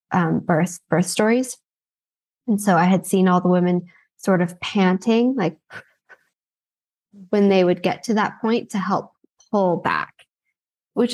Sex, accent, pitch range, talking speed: female, American, 180-215 Hz, 150 wpm